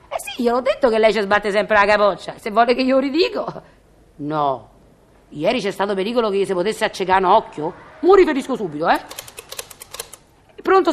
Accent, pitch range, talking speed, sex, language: native, 195-310 Hz, 180 wpm, female, Italian